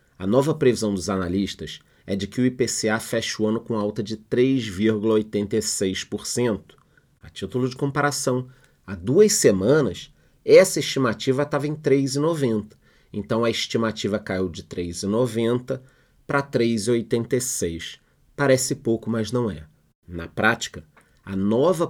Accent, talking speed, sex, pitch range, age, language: Brazilian, 125 wpm, male, 100-130 Hz, 30-49, Portuguese